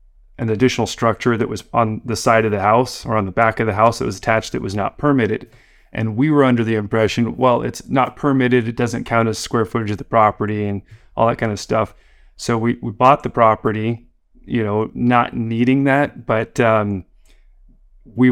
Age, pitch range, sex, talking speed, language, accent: 30-49, 110-130 Hz, male, 210 wpm, English, American